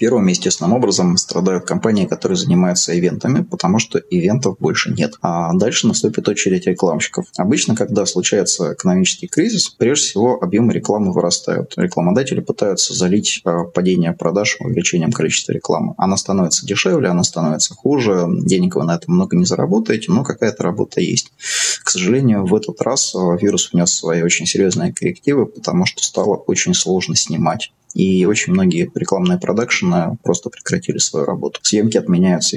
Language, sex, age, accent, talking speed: Russian, male, 20-39, native, 150 wpm